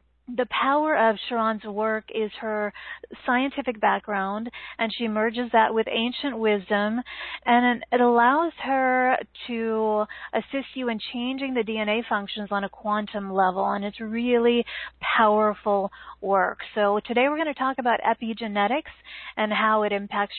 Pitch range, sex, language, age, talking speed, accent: 210-245 Hz, female, English, 30-49, 145 wpm, American